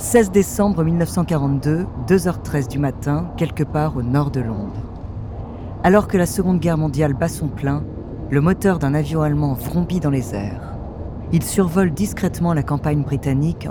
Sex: female